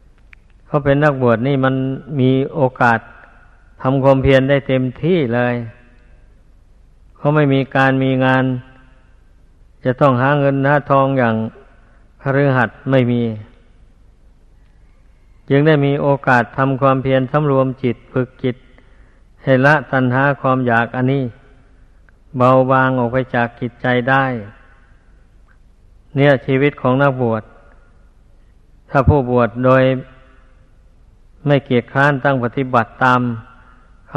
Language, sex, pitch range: Thai, male, 115-135 Hz